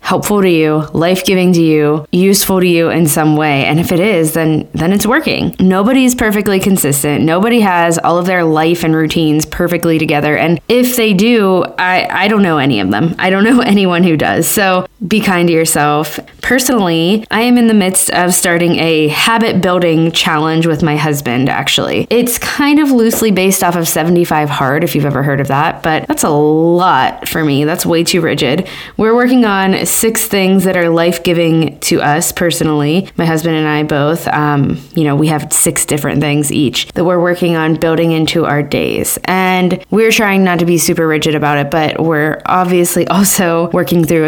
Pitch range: 155-190 Hz